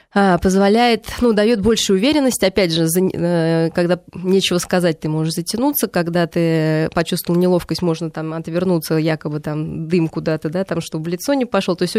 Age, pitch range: 20-39, 175-210 Hz